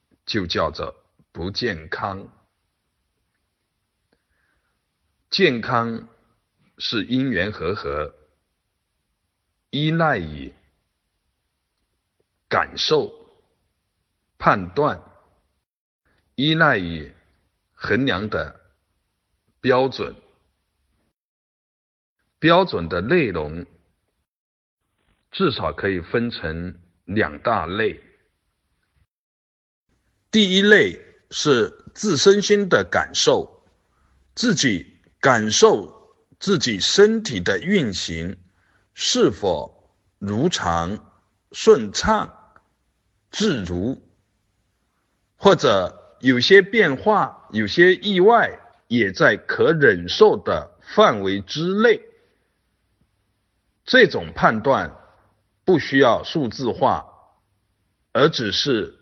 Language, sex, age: Chinese, male, 60-79